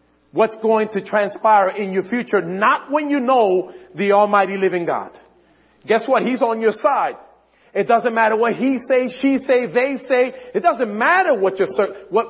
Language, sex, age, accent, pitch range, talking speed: English, male, 40-59, American, 185-255 Hz, 180 wpm